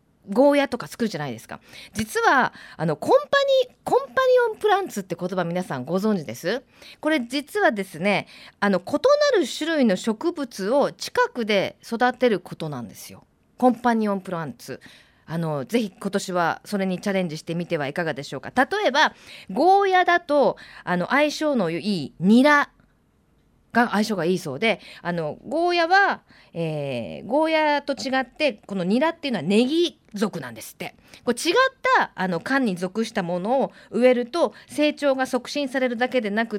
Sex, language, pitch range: female, Japanese, 185-295 Hz